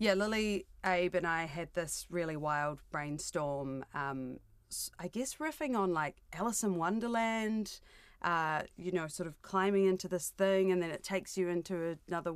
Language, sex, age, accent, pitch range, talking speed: English, female, 30-49, Australian, 150-190 Hz, 170 wpm